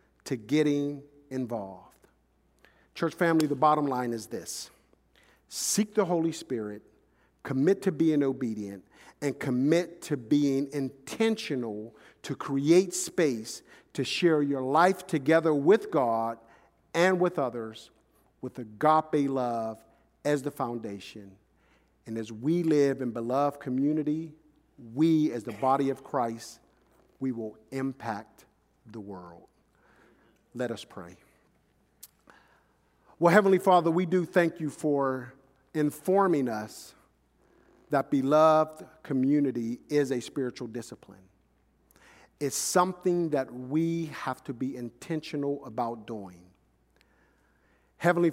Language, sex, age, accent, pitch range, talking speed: English, male, 50-69, American, 115-160 Hz, 115 wpm